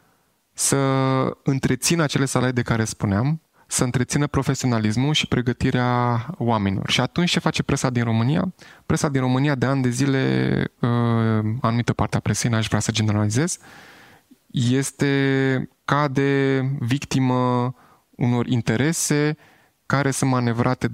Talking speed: 125 wpm